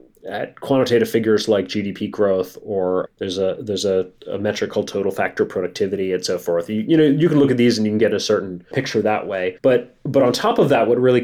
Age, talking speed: 30-49, 240 wpm